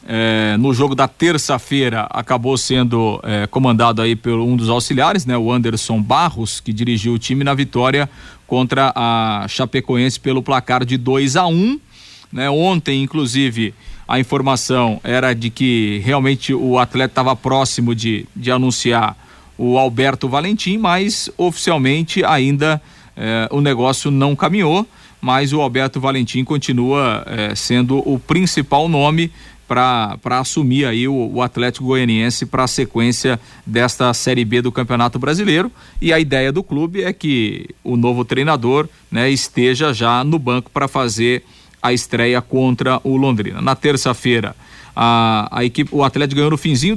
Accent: Brazilian